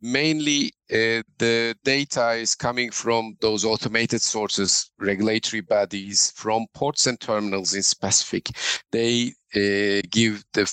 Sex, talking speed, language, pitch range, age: male, 125 wpm, English, 105-130 Hz, 50-69